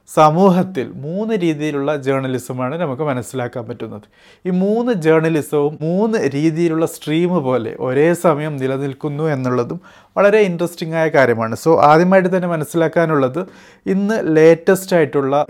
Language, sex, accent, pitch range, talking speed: Malayalam, male, native, 140-175 Hz, 110 wpm